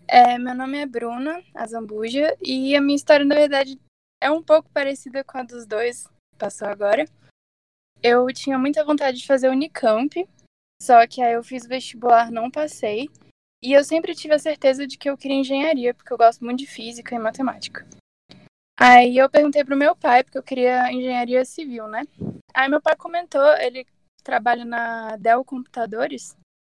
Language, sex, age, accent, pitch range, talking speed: Portuguese, female, 10-29, Brazilian, 240-305 Hz, 175 wpm